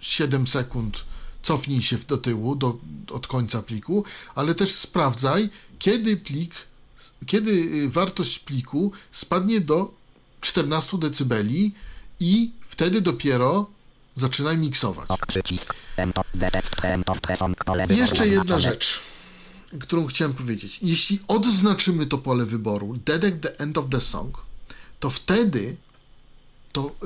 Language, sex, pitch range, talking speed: Polish, male, 130-175 Hz, 110 wpm